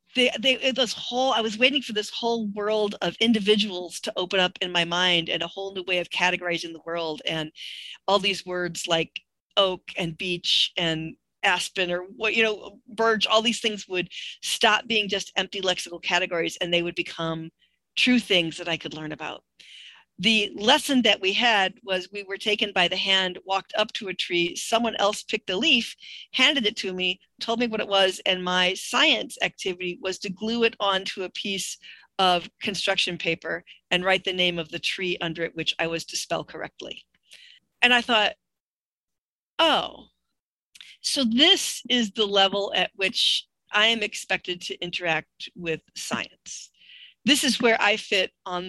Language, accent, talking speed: English, American, 180 wpm